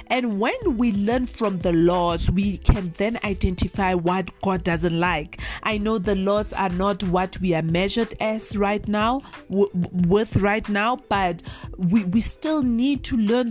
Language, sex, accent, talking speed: English, female, South African, 170 wpm